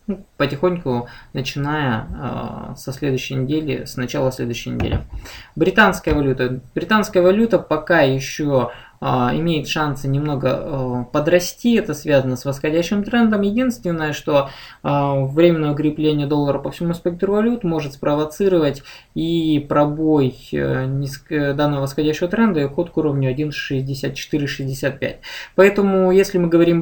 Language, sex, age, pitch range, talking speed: Russian, male, 20-39, 140-180 Hz, 120 wpm